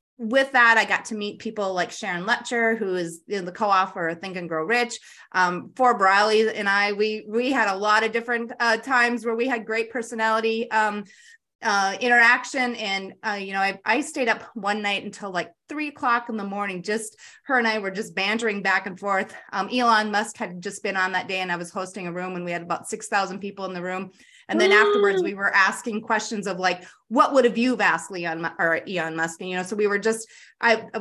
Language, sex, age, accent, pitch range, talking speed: English, female, 30-49, American, 195-245 Hz, 230 wpm